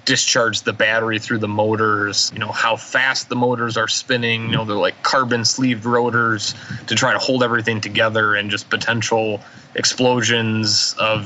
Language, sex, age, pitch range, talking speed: English, male, 20-39, 105-125 Hz, 165 wpm